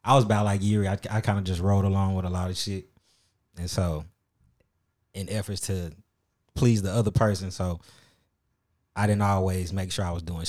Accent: American